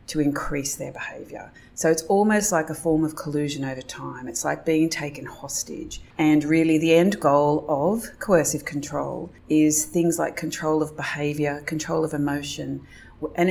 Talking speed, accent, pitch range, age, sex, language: 165 wpm, Australian, 145-170 Hz, 30-49, female, English